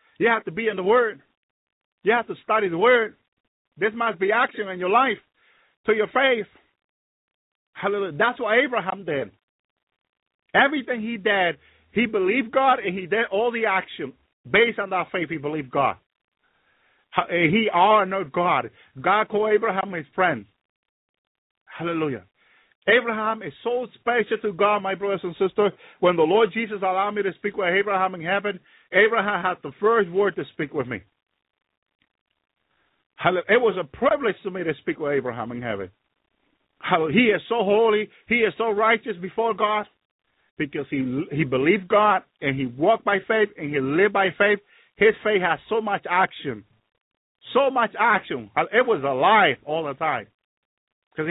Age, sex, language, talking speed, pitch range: 50-69, male, English, 165 wpm, 175-220 Hz